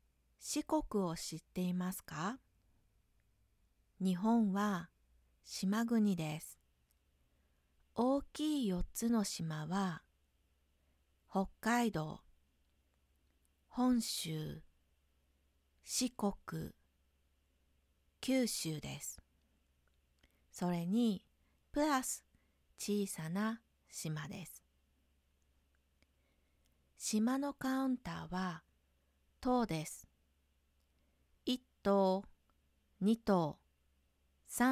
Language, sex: Japanese, female